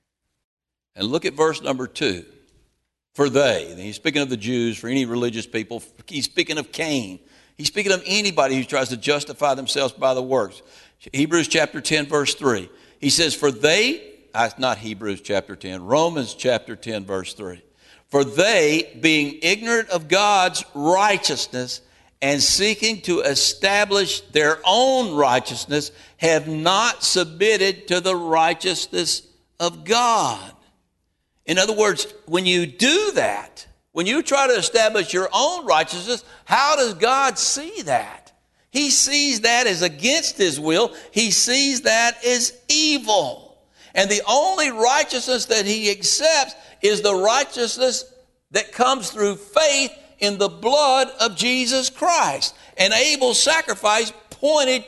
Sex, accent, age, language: male, American, 60-79, English